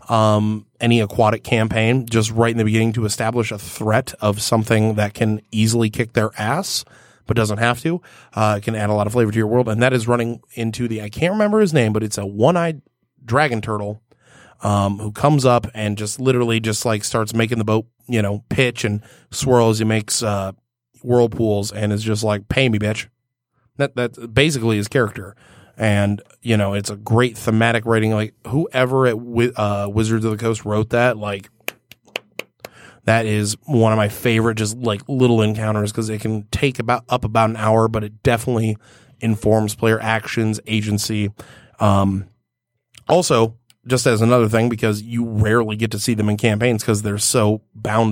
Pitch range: 105-120 Hz